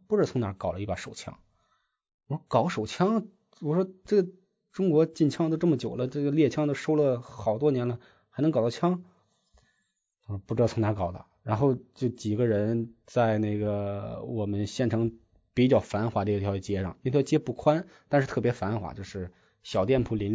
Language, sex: Chinese, male